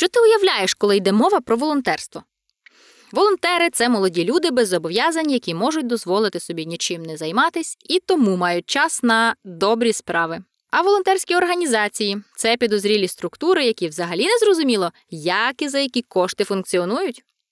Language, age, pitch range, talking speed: Ukrainian, 20-39, 190-300 Hz, 160 wpm